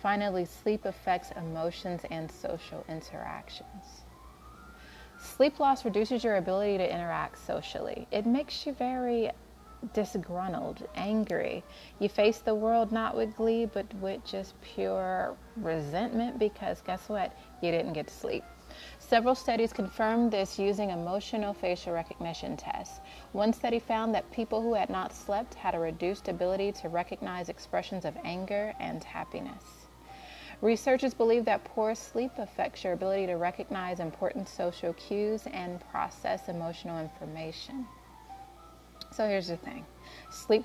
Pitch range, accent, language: 180-225 Hz, American, English